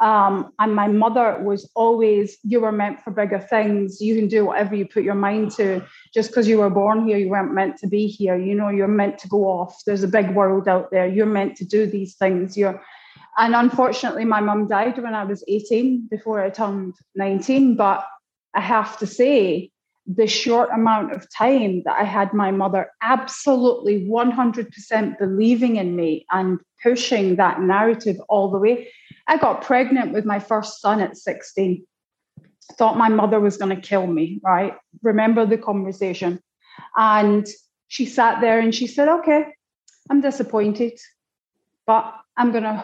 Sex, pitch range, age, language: female, 200-230 Hz, 30-49, English